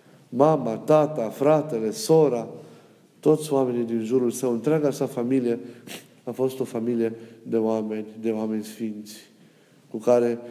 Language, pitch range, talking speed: Romanian, 110-125 Hz, 130 wpm